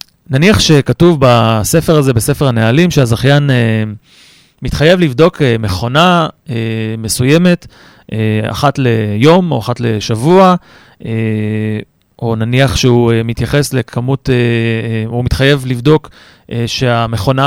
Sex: male